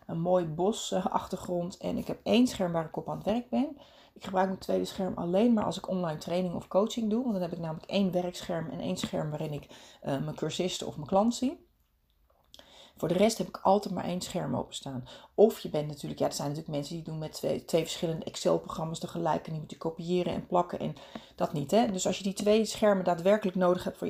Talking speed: 245 wpm